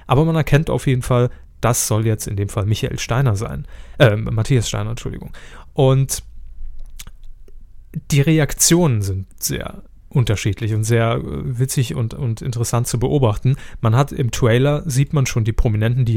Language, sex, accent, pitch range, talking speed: German, male, German, 110-140 Hz, 160 wpm